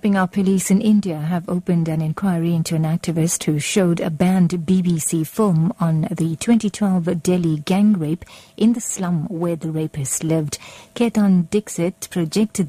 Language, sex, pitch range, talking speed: English, female, 160-210 Hz, 160 wpm